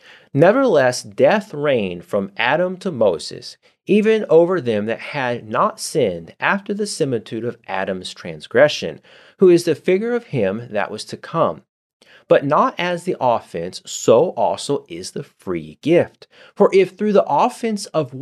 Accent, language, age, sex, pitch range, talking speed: American, English, 30-49, male, 130-205 Hz, 155 wpm